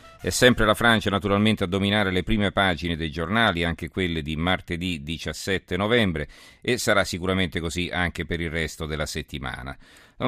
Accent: native